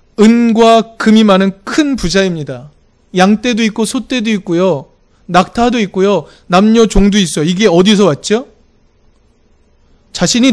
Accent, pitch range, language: native, 180-235 Hz, Korean